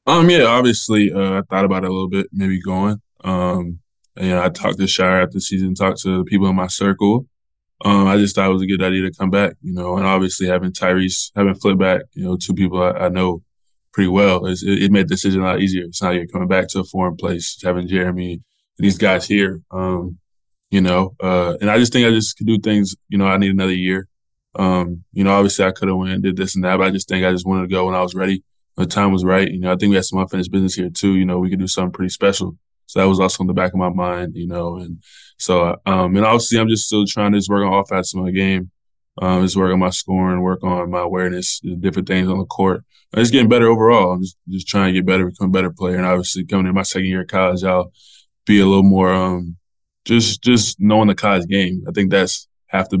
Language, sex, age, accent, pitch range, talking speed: English, male, 20-39, American, 90-100 Hz, 270 wpm